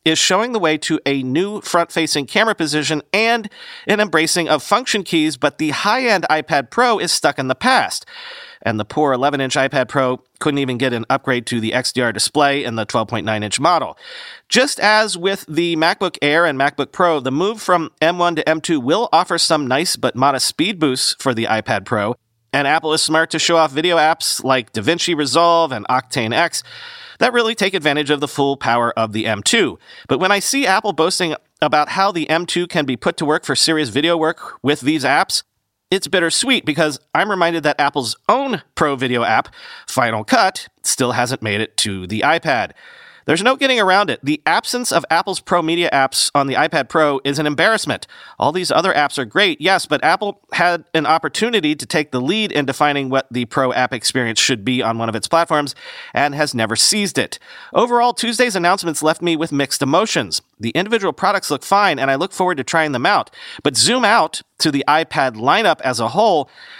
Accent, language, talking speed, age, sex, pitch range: American, English, 200 wpm, 40-59, male, 135-180 Hz